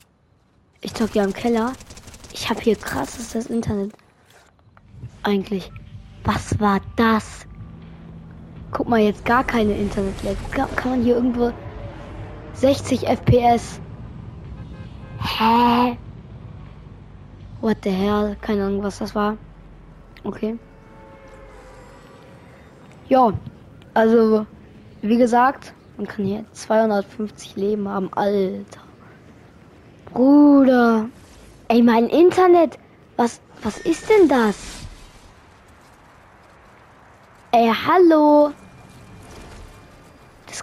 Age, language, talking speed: 20-39, English, 90 wpm